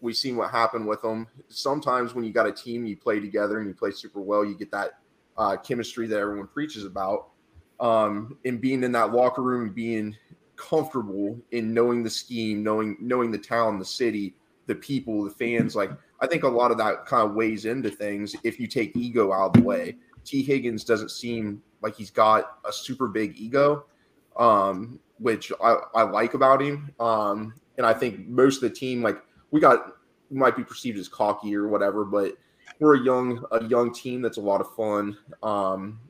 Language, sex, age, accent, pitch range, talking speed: English, male, 20-39, American, 105-120 Hz, 200 wpm